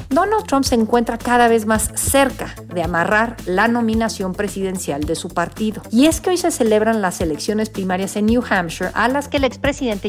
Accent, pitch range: Mexican, 185-245 Hz